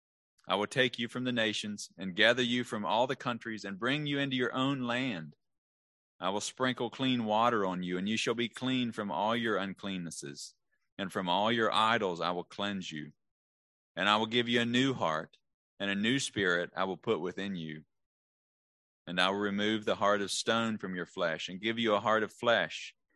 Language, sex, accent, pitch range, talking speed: English, male, American, 90-115 Hz, 210 wpm